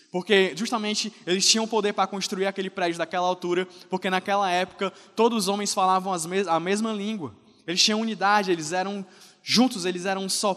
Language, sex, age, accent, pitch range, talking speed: Portuguese, male, 20-39, Brazilian, 175-210 Hz, 175 wpm